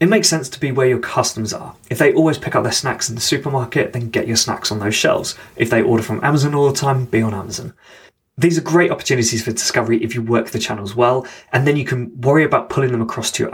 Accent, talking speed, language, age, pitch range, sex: British, 265 wpm, English, 20-39, 115-135 Hz, male